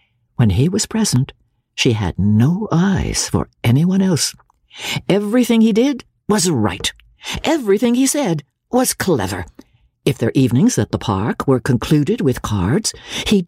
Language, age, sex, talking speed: English, 60-79, female, 140 wpm